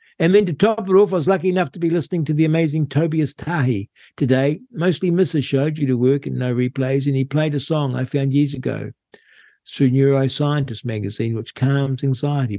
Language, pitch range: English, 120-155 Hz